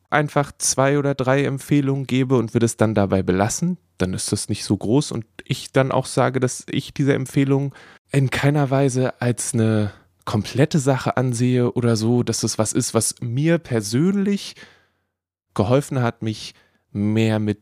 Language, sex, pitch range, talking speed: German, male, 95-130 Hz, 165 wpm